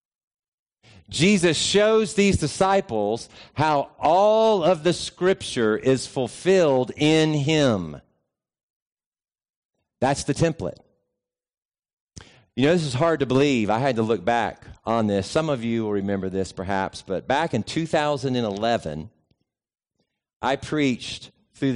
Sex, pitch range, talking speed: male, 110-155 Hz, 120 wpm